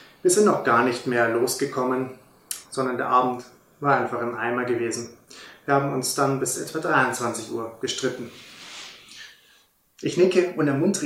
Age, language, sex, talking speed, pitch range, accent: 30-49, German, male, 150 wpm, 120-160 Hz, German